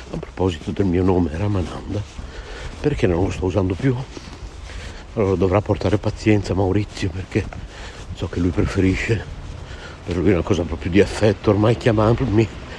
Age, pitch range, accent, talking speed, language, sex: 60-79, 95-115 Hz, native, 150 wpm, Italian, male